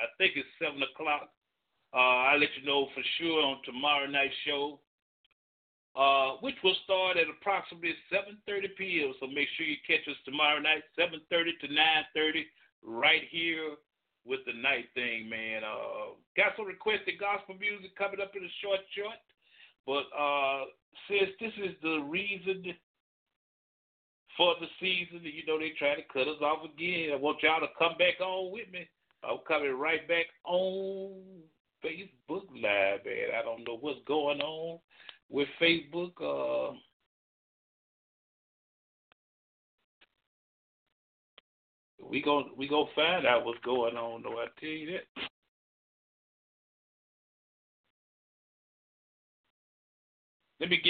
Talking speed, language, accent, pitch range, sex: 125 wpm, English, American, 140-185 Hz, male